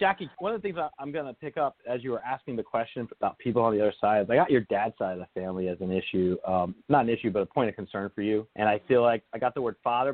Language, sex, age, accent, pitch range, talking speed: English, male, 40-59, American, 100-130 Hz, 315 wpm